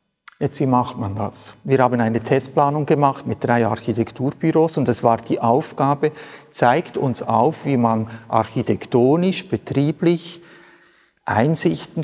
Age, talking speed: 50-69, 130 wpm